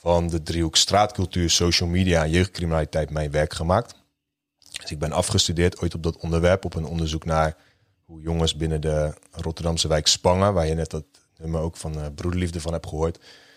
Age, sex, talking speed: 30-49, male, 180 wpm